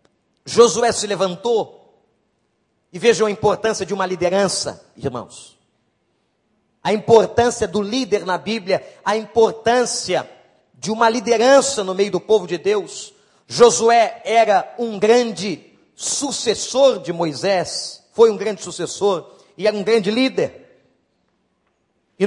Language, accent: Portuguese, Brazilian